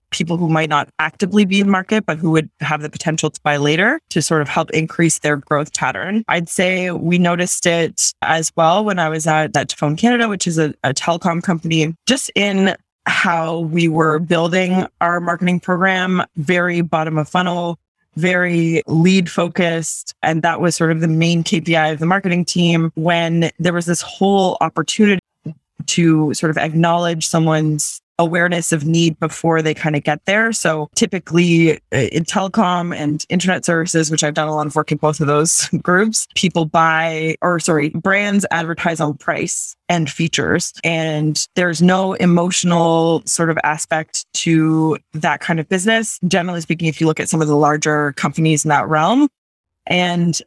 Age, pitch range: 20-39, 155-180 Hz